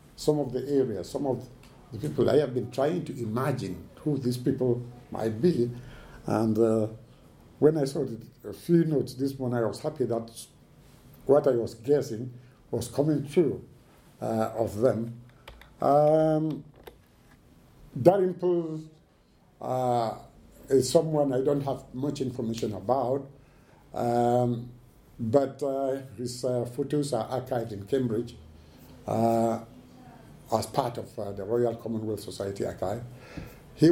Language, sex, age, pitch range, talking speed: English, male, 60-79, 120-145 Hz, 125 wpm